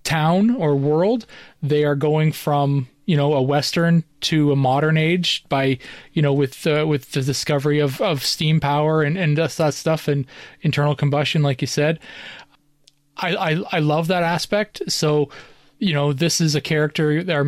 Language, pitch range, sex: English, 145-165 Hz, male